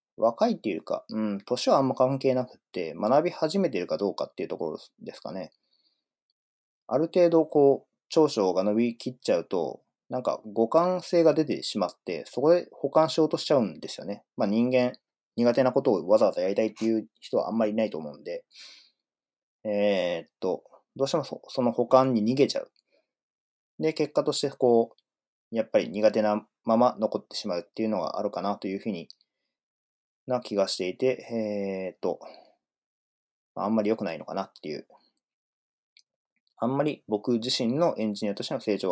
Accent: native